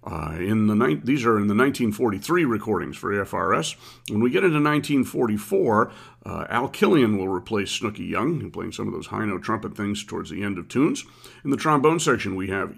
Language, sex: English, male